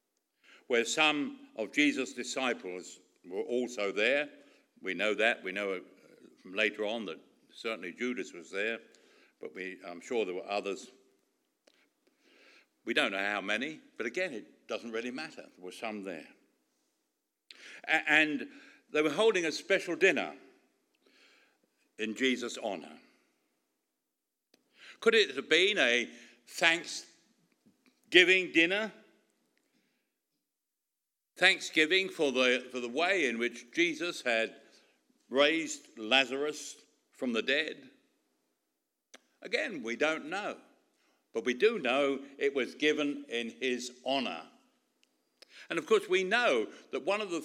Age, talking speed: 60-79, 125 wpm